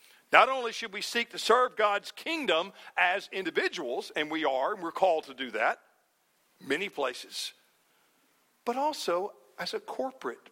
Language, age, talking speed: English, 50-69, 155 wpm